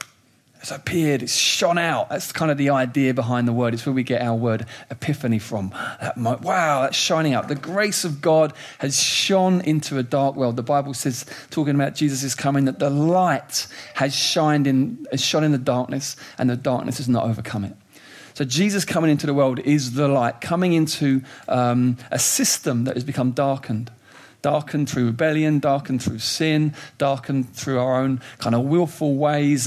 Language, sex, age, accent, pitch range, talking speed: English, male, 40-59, British, 125-150 Hz, 190 wpm